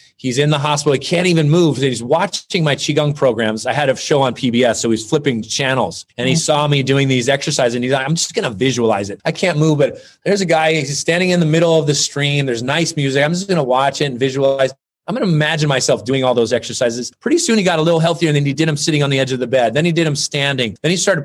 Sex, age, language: male, 30-49, English